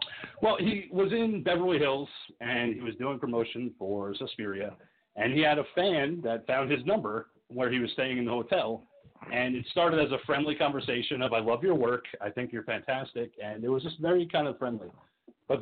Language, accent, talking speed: English, American, 210 wpm